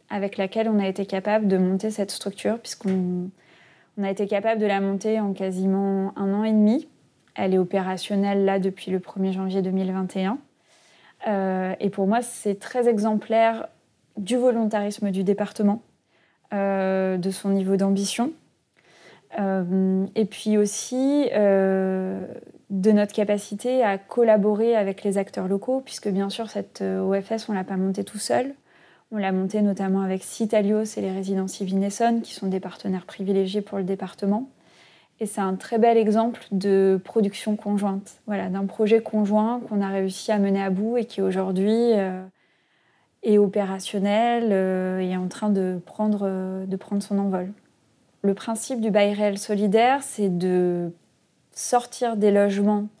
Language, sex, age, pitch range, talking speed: French, female, 20-39, 190-215 Hz, 155 wpm